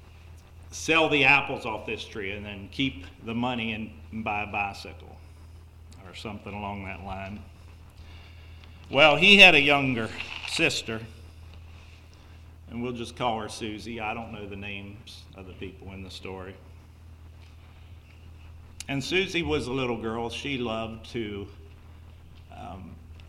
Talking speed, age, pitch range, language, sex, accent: 135 wpm, 50-69, 85-120 Hz, English, male, American